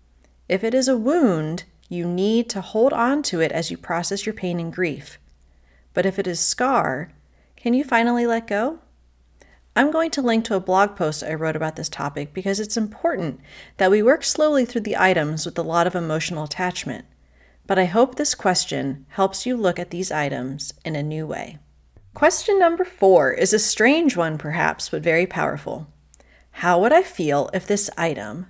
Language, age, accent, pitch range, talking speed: English, 30-49, American, 160-225 Hz, 190 wpm